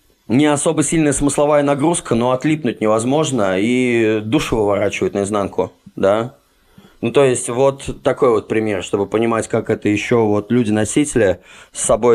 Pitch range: 105-130 Hz